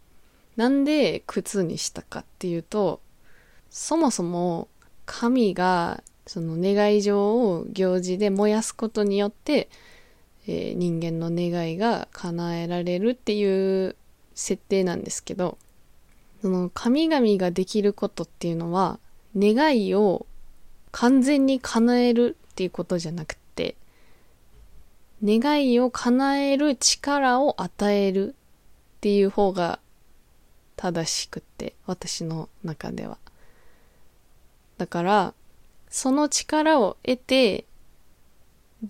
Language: Japanese